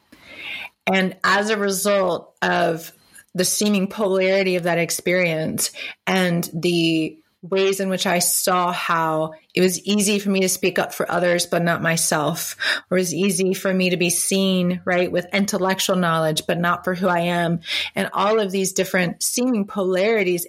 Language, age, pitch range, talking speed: English, 30-49, 175-200 Hz, 165 wpm